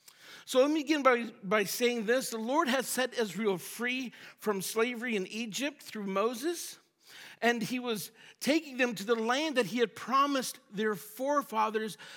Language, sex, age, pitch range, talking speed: English, male, 50-69, 215-260 Hz, 170 wpm